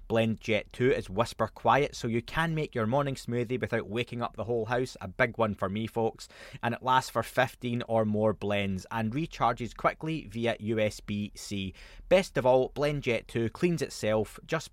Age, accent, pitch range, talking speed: 20-39, British, 110-135 Hz, 185 wpm